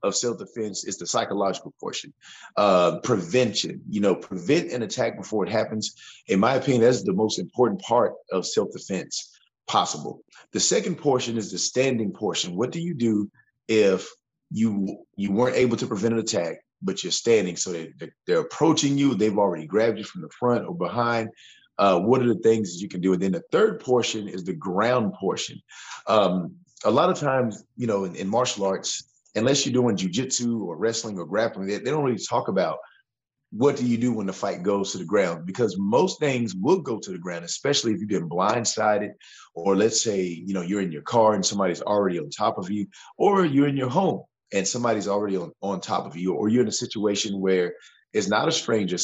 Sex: male